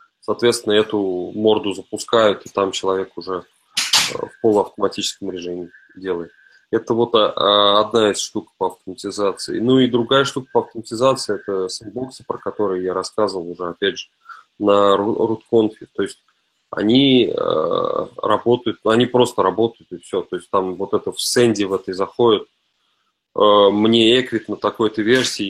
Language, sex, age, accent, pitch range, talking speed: Russian, male, 20-39, native, 100-125 Hz, 140 wpm